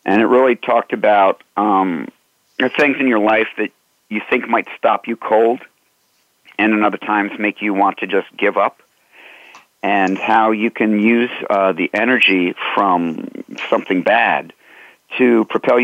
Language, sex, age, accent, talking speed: English, male, 50-69, American, 160 wpm